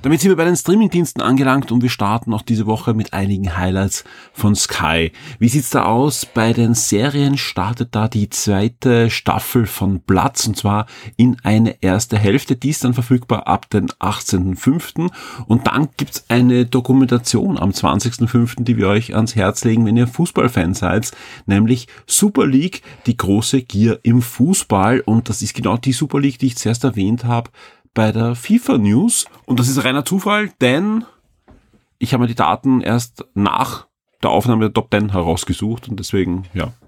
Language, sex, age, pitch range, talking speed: German, male, 40-59, 105-130 Hz, 180 wpm